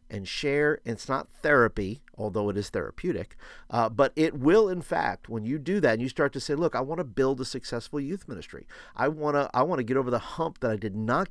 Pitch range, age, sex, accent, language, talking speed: 110-145 Hz, 50-69, male, American, English, 250 wpm